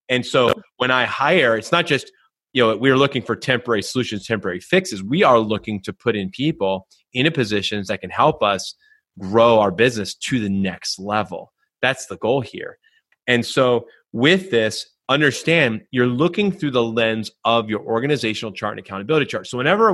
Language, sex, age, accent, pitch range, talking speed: English, male, 30-49, American, 115-160 Hz, 180 wpm